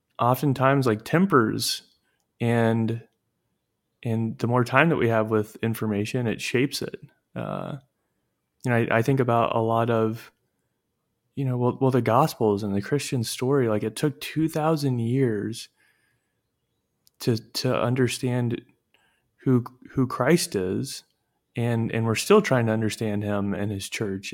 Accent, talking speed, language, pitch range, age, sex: American, 145 wpm, English, 115-130 Hz, 20-39, male